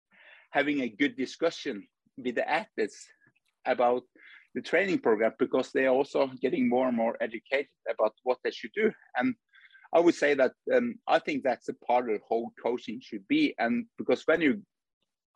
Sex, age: male, 50-69